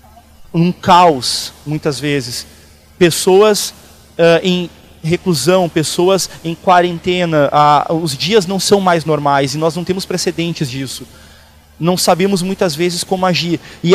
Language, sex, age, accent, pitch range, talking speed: Portuguese, male, 30-49, Brazilian, 155-185 Hz, 125 wpm